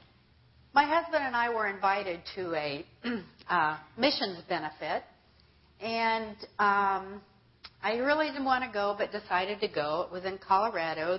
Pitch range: 185-265 Hz